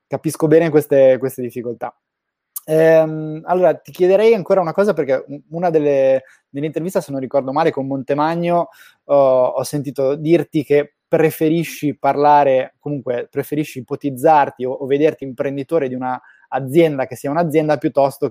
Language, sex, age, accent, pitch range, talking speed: Italian, male, 20-39, native, 130-155 Hz, 145 wpm